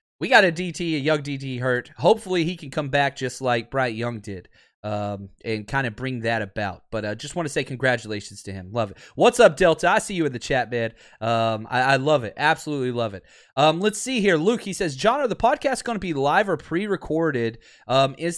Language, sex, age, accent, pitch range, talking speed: English, male, 30-49, American, 120-165 Hz, 245 wpm